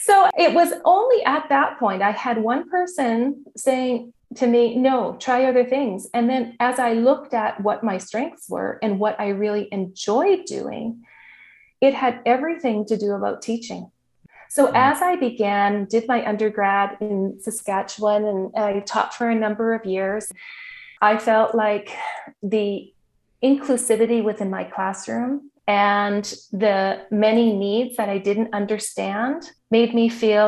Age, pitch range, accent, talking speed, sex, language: 30-49, 200-245 Hz, American, 150 wpm, female, English